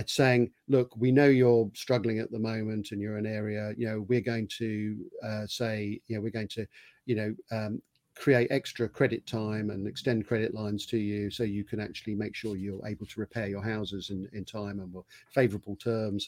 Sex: male